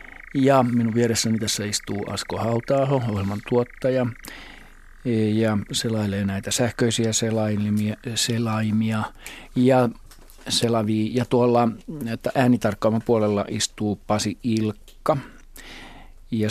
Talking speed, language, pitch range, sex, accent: 95 wpm, Finnish, 105-125 Hz, male, native